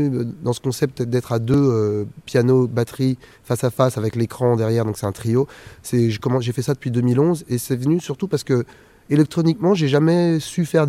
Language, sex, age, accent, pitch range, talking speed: French, male, 20-39, French, 110-130 Hz, 210 wpm